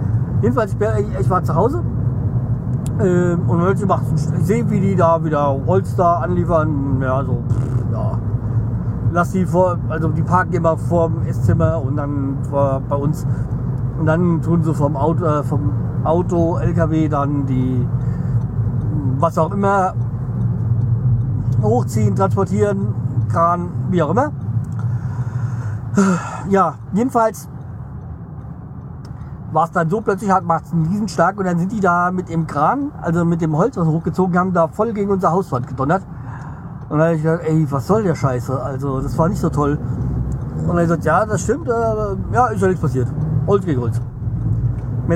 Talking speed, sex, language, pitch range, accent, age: 165 wpm, male, German, 120-165 Hz, German, 50-69